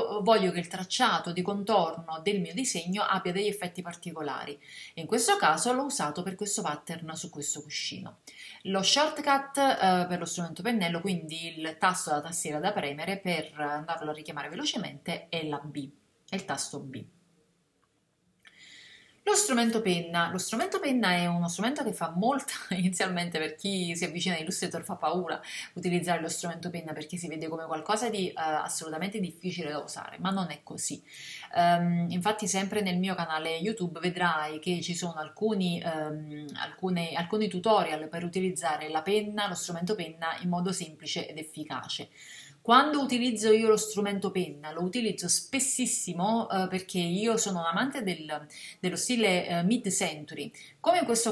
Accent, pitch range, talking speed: native, 165-210 Hz, 165 wpm